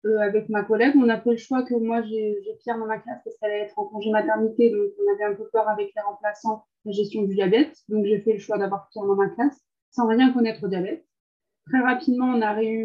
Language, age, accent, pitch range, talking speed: French, 20-39, French, 210-260 Hz, 270 wpm